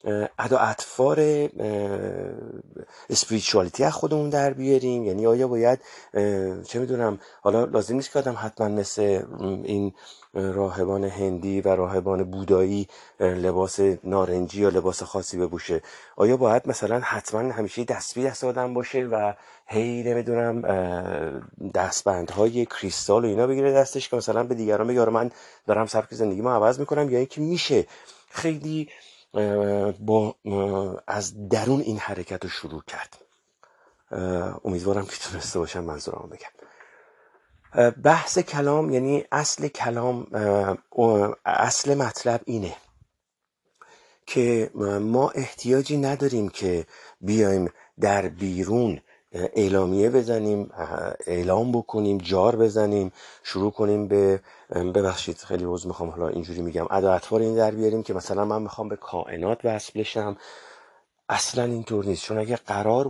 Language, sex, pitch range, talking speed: Persian, male, 95-120 Hz, 120 wpm